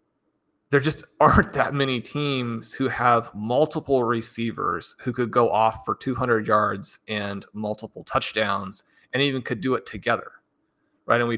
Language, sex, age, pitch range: English, male, 30-49, 115-140 Hz